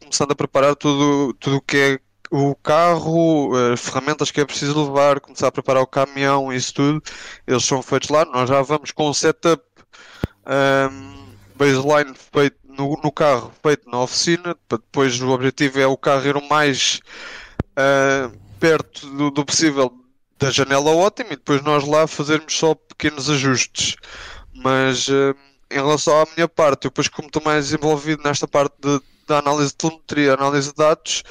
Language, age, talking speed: Portuguese, 20-39, 165 wpm